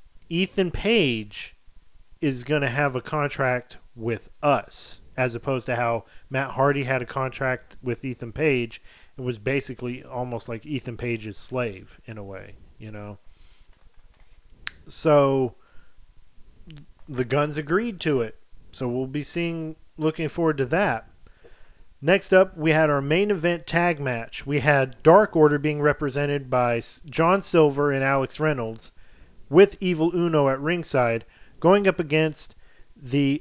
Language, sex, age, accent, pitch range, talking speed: English, male, 40-59, American, 120-155 Hz, 140 wpm